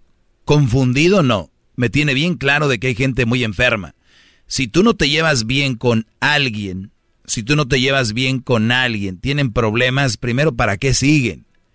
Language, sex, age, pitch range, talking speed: Spanish, male, 40-59, 115-140 Hz, 175 wpm